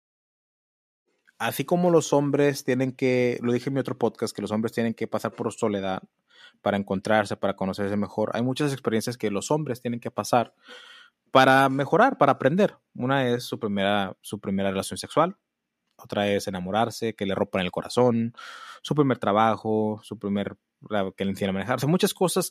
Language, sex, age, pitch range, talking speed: Spanish, male, 20-39, 110-140 Hz, 180 wpm